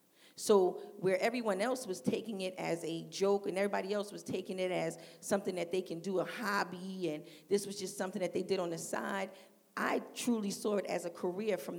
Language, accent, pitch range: English, American, 180-215 Hz